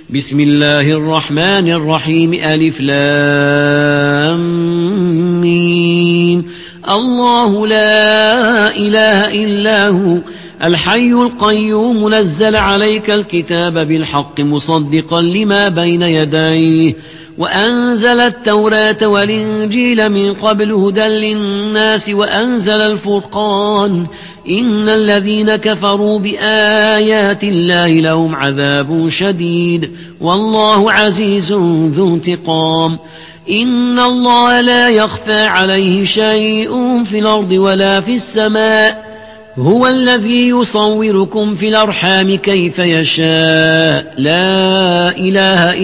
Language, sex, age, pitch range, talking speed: Arabic, male, 50-69, 165-215 Hz, 80 wpm